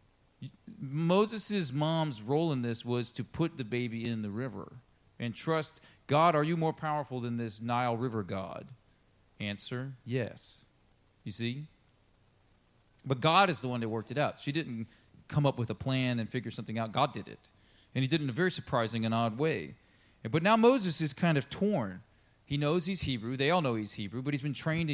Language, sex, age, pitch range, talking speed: English, male, 40-59, 120-165 Hz, 200 wpm